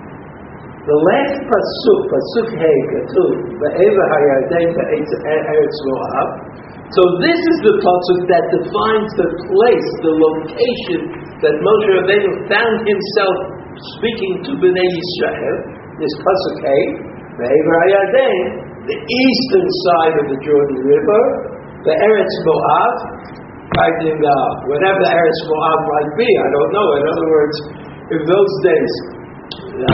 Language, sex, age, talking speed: English, male, 60-79, 125 wpm